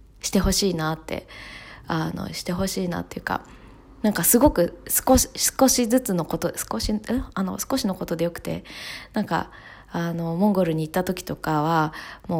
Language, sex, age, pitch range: Japanese, female, 20-39, 155-200 Hz